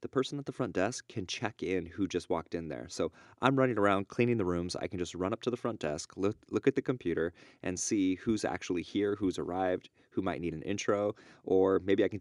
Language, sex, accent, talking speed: English, male, American, 250 wpm